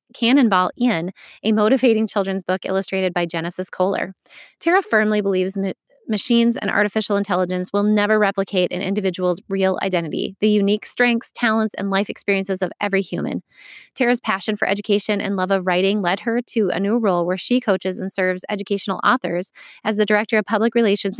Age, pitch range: 20-39, 185-220 Hz